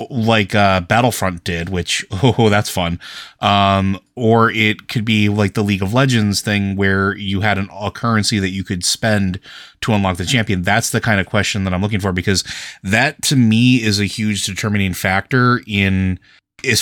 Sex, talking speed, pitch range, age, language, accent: male, 190 wpm, 95-115 Hz, 30-49, English, American